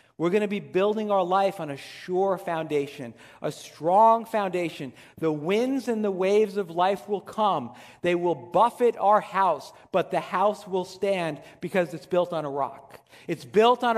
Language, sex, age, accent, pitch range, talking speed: English, male, 50-69, American, 170-240 Hz, 180 wpm